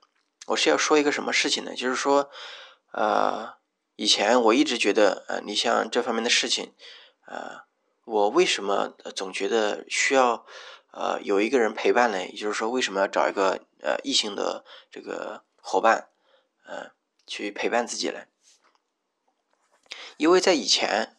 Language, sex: Chinese, male